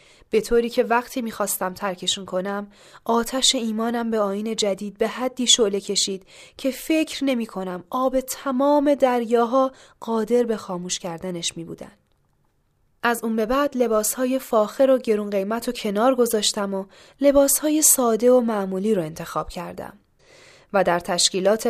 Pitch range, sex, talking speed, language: 200-265 Hz, female, 140 wpm, Persian